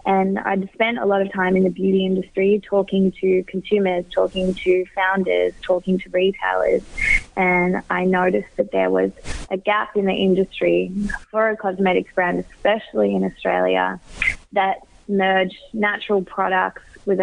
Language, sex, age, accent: English, female, 20-39, Australian